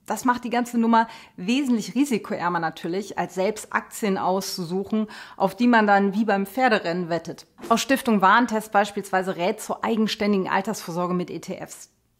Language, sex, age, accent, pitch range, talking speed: German, female, 30-49, German, 190-230 Hz, 150 wpm